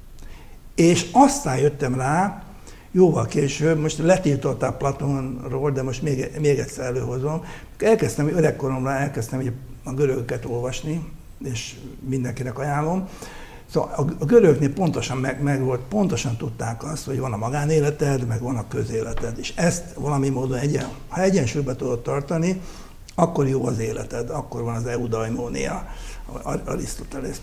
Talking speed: 140 wpm